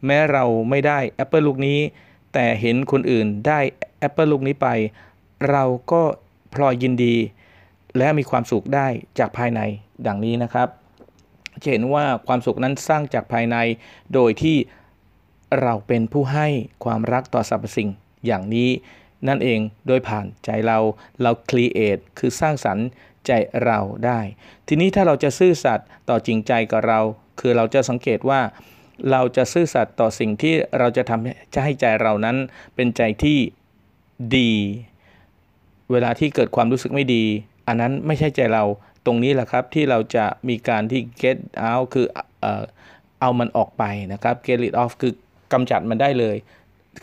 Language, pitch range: Thai, 110-135 Hz